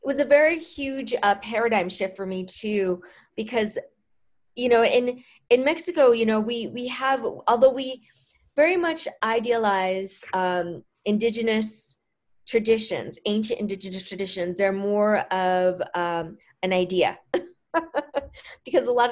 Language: English